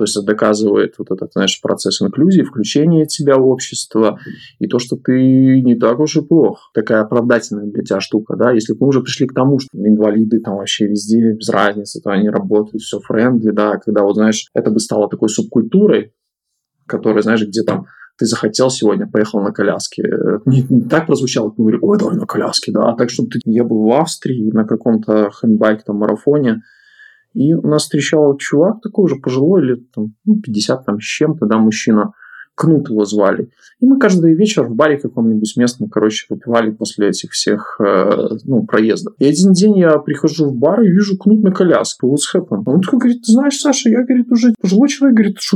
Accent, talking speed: native, 195 wpm